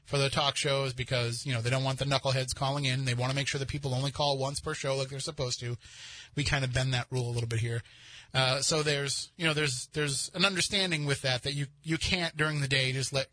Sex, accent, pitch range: male, American, 110-150 Hz